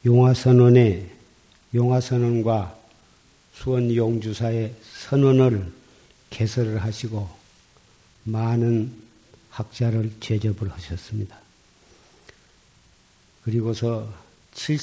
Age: 50-69